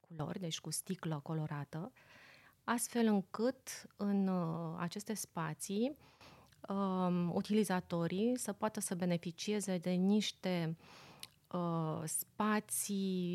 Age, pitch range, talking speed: 30-49, 165-210 Hz, 80 wpm